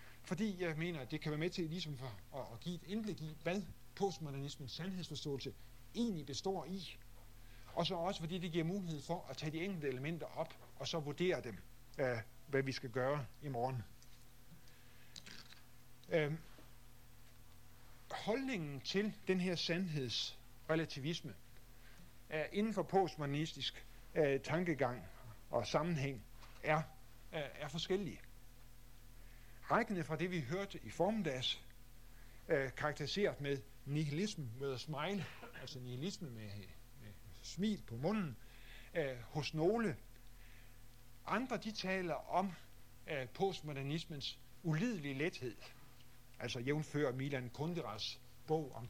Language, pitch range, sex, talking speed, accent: Danish, 125-165 Hz, male, 120 wpm, native